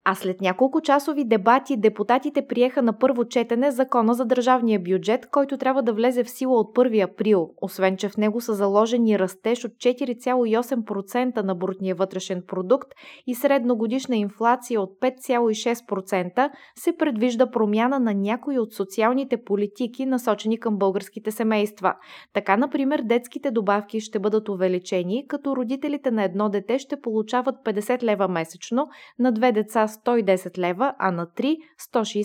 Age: 20-39